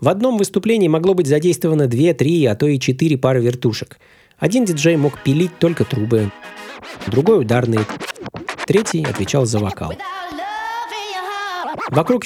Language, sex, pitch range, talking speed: Russian, male, 120-170 Hz, 130 wpm